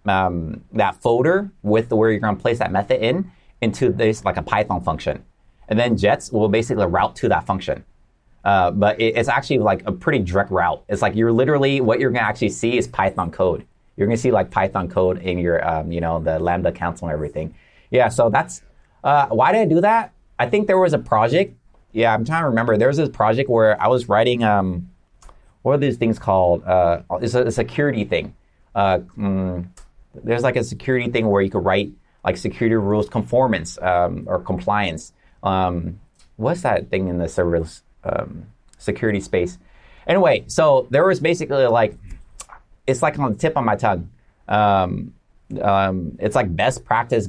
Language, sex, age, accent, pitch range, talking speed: English, male, 30-49, American, 90-120 Hz, 200 wpm